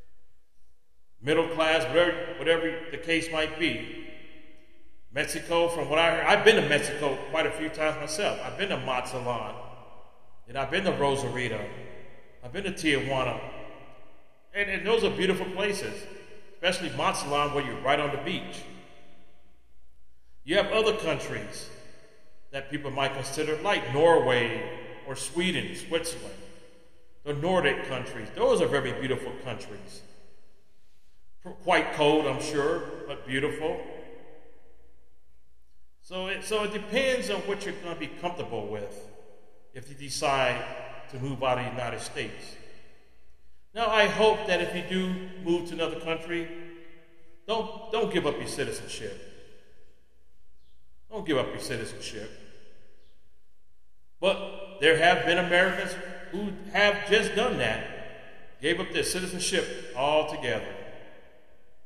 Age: 40-59